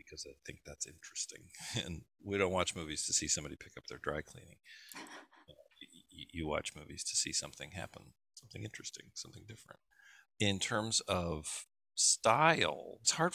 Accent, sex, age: American, male, 50-69